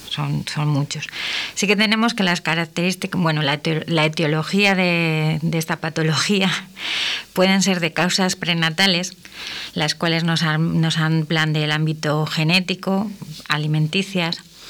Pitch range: 155-180 Hz